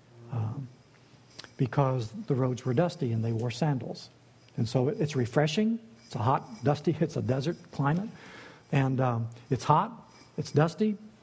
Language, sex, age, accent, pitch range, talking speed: English, male, 60-79, American, 125-165 Hz, 150 wpm